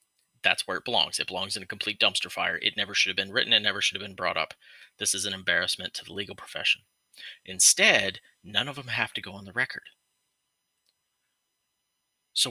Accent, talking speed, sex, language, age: American, 205 wpm, male, English, 30-49